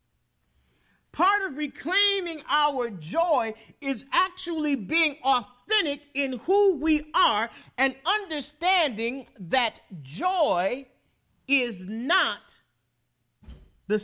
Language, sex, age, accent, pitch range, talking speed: English, male, 40-59, American, 225-330 Hz, 85 wpm